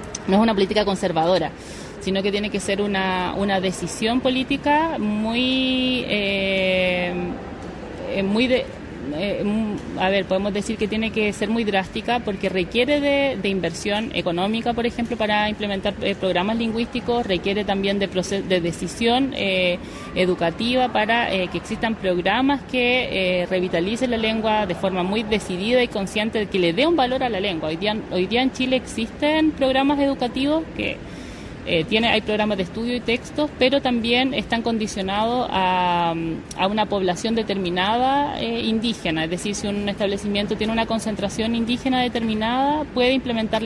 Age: 30-49